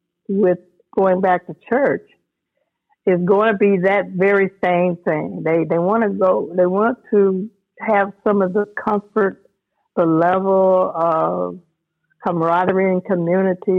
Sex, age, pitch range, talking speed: female, 60-79, 175-210 Hz, 140 wpm